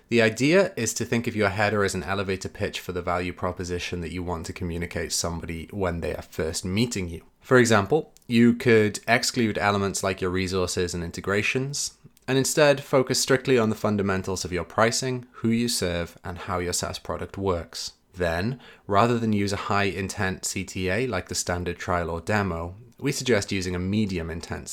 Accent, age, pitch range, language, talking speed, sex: British, 30-49, 90-115 Hz, English, 190 wpm, male